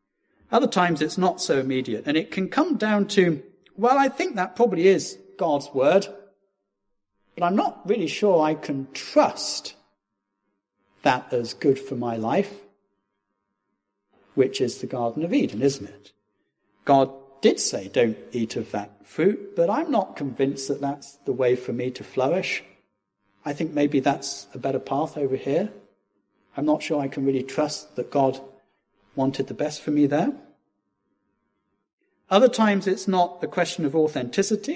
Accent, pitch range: British, 115-185 Hz